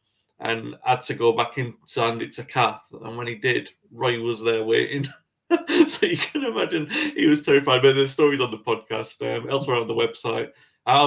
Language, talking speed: English, 205 wpm